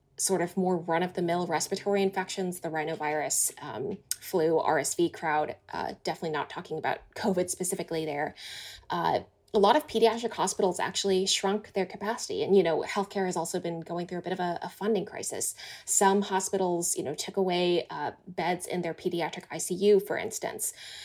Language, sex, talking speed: English, female, 180 wpm